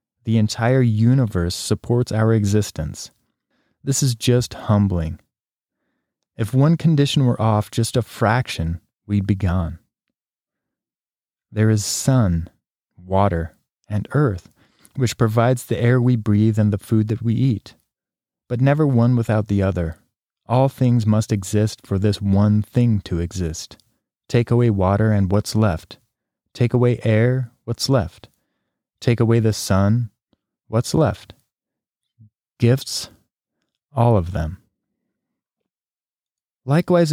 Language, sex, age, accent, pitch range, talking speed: English, male, 30-49, American, 100-125 Hz, 125 wpm